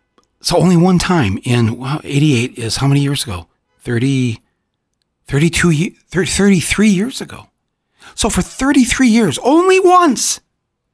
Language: English